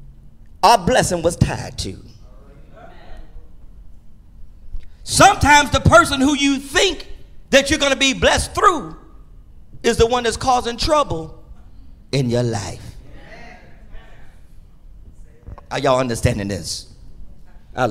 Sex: male